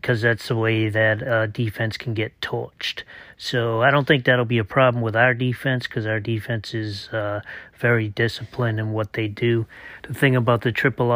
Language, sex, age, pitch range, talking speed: English, male, 30-49, 110-125 Hz, 200 wpm